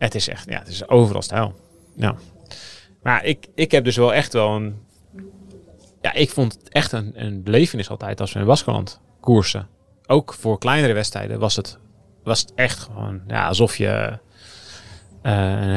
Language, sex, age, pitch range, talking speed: Dutch, male, 30-49, 95-115 Hz, 180 wpm